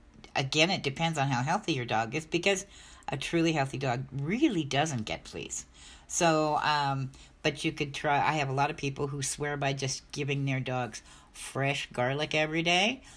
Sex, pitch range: female, 130-155 Hz